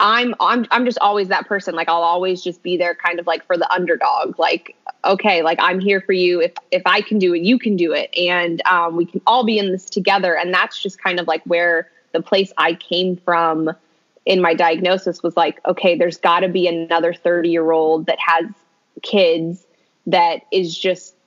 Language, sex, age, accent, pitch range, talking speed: English, female, 20-39, American, 175-230 Hz, 215 wpm